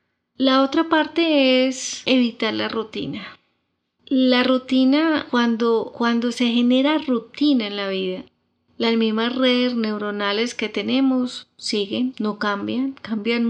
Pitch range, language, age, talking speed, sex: 210-255 Hz, Spanish, 30-49, 120 wpm, female